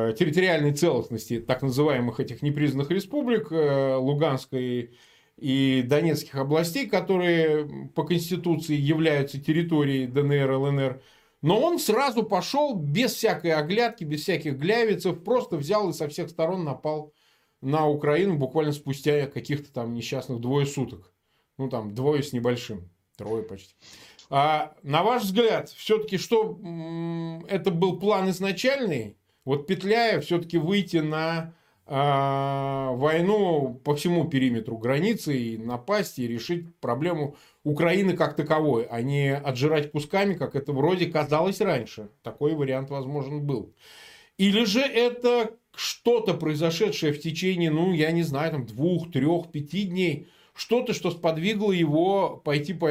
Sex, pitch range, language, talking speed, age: male, 140-185 Hz, Russian, 130 wpm, 20-39